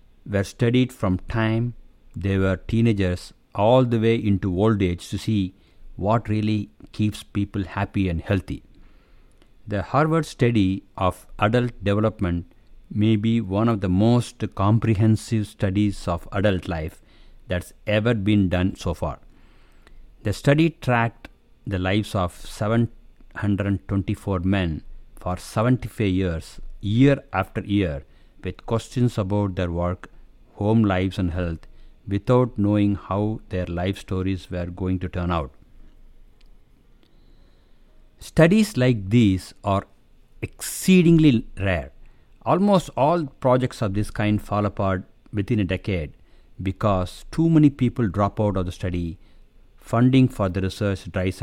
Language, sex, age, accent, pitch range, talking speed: English, male, 60-79, Indian, 95-115 Hz, 130 wpm